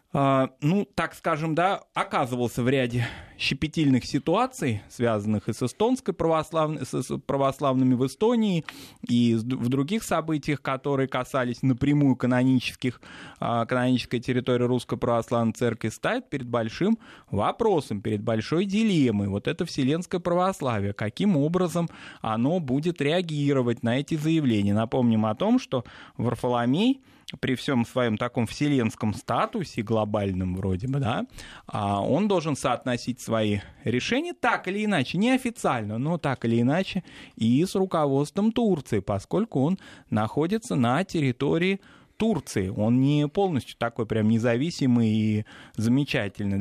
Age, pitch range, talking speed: 20-39, 115-165 Hz, 125 wpm